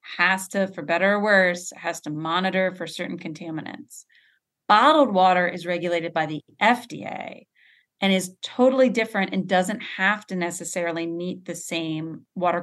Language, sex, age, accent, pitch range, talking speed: English, female, 30-49, American, 175-210 Hz, 150 wpm